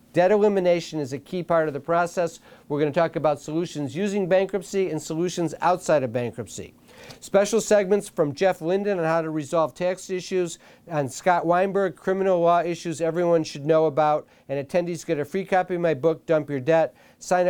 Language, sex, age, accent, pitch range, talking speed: English, male, 50-69, American, 155-185 Hz, 190 wpm